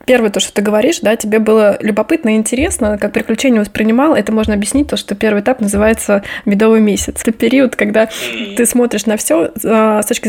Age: 20-39